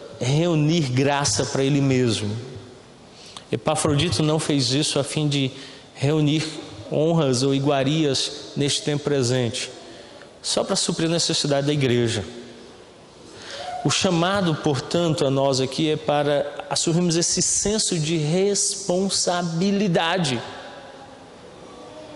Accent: Brazilian